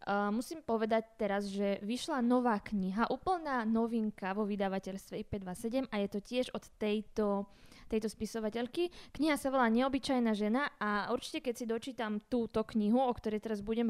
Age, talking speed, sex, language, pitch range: 20-39, 160 wpm, female, Slovak, 205-255 Hz